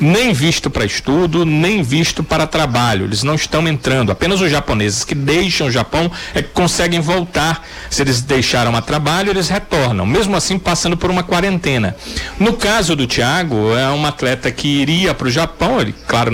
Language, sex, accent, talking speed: Portuguese, male, Brazilian, 185 wpm